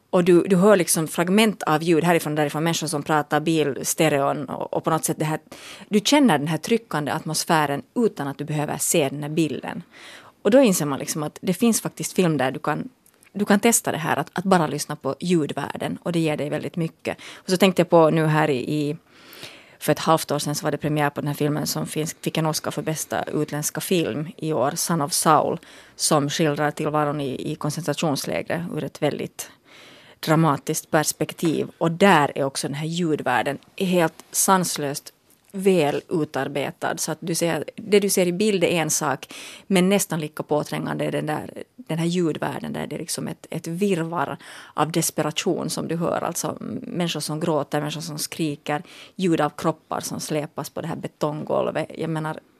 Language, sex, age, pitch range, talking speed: Finnish, female, 30-49, 150-180 Hz, 200 wpm